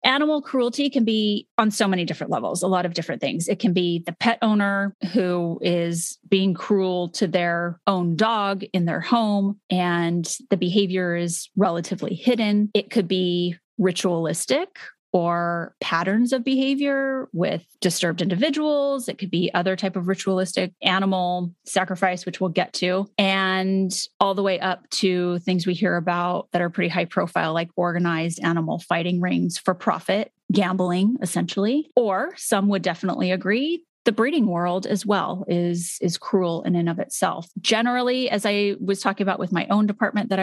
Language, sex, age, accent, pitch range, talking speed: English, female, 30-49, American, 175-205 Hz, 170 wpm